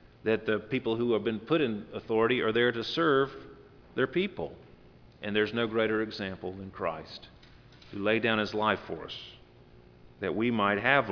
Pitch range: 95-125 Hz